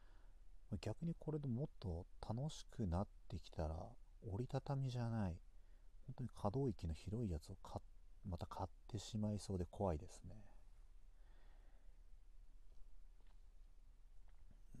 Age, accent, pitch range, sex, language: 40-59, native, 85-100 Hz, male, Japanese